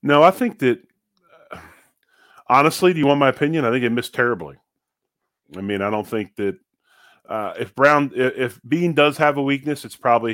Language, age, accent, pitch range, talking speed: English, 30-49, American, 95-120 Hz, 190 wpm